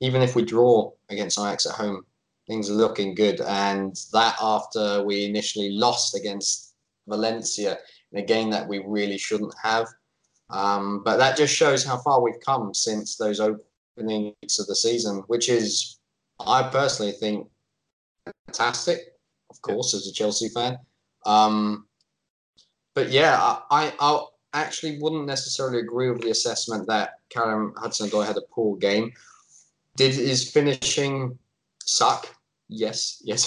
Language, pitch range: English, 105-125 Hz